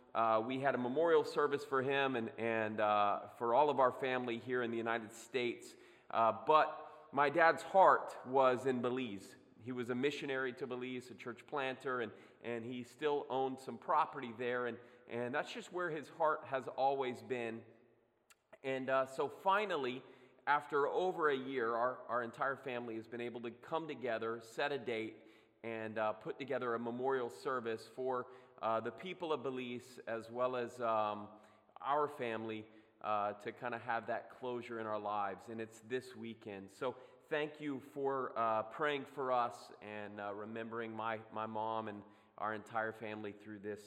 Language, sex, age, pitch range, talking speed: English, male, 30-49, 110-135 Hz, 180 wpm